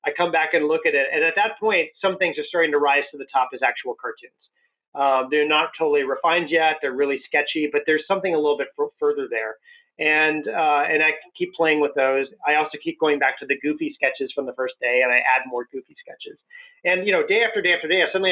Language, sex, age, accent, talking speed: English, male, 30-49, American, 255 wpm